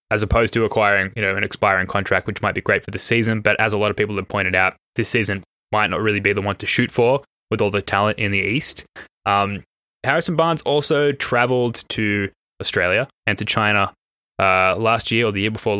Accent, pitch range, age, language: Australian, 100-125 Hz, 10-29, English